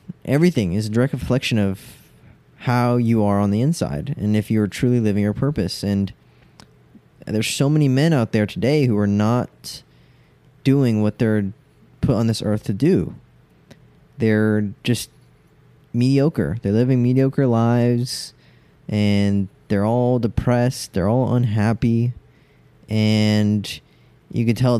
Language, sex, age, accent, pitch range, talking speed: English, male, 20-39, American, 105-130 Hz, 140 wpm